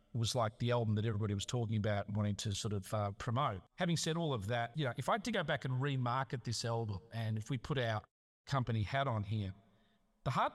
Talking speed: 255 wpm